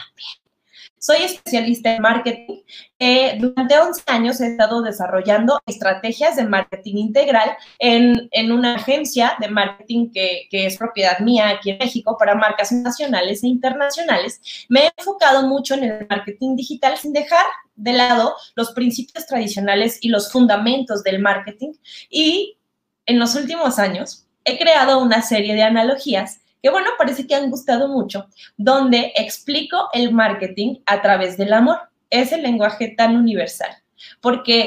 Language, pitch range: Spanish, 215-285 Hz